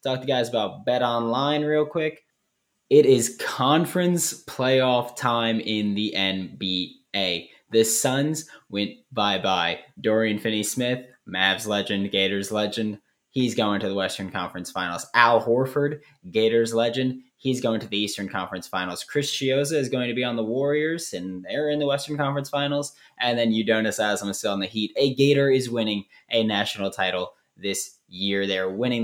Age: 20-39